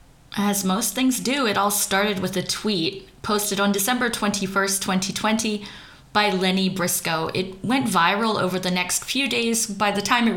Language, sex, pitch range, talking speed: English, female, 190-240 Hz, 175 wpm